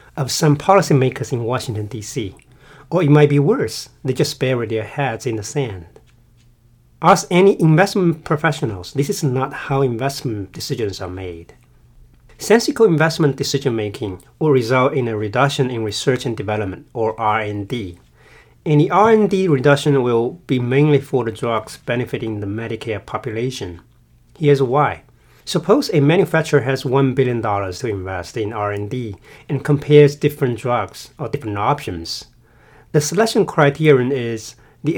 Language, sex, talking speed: English, male, 145 wpm